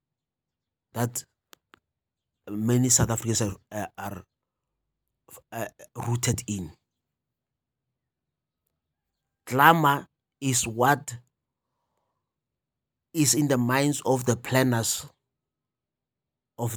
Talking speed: 75 wpm